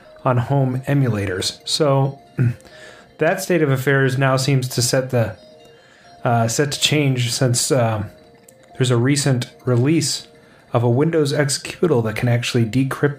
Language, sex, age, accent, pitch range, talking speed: English, male, 30-49, American, 120-155 Hz, 140 wpm